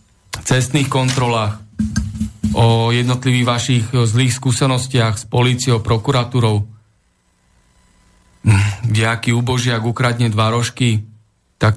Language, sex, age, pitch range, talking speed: Slovak, male, 40-59, 110-130 Hz, 80 wpm